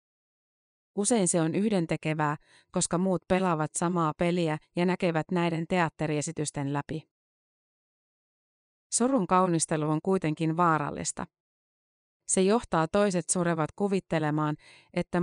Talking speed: 100 wpm